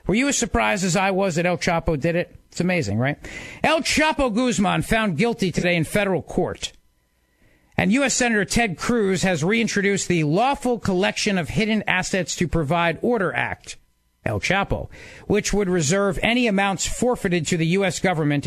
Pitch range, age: 150-210 Hz, 50-69